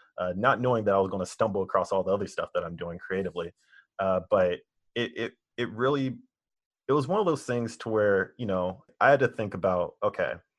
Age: 20-39